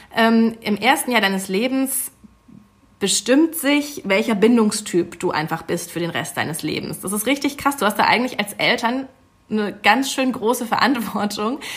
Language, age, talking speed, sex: German, 30-49, 170 wpm, female